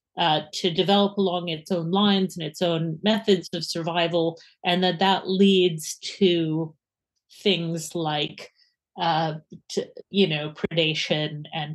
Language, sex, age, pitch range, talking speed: English, female, 40-59, 165-210 Hz, 135 wpm